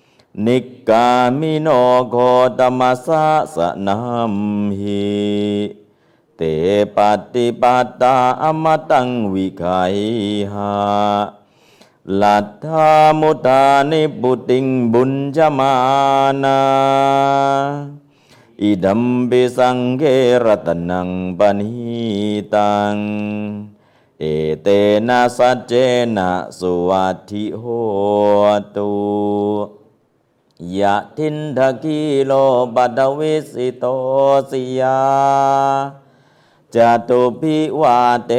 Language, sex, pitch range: Thai, male, 105-135 Hz